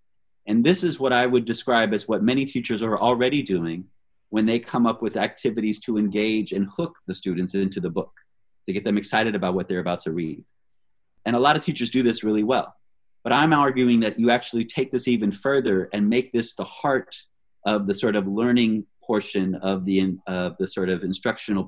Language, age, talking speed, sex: English, 30-49, 210 wpm, male